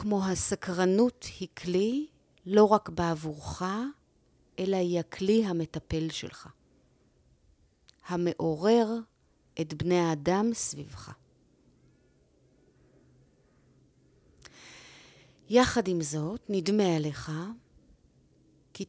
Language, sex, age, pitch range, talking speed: Hebrew, female, 30-49, 140-200 Hz, 75 wpm